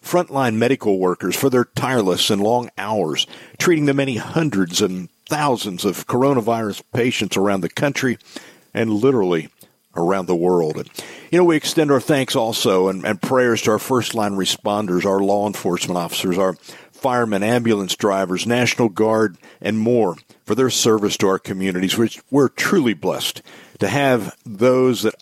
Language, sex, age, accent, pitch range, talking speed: English, male, 50-69, American, 100-135 Hz, 160 wpm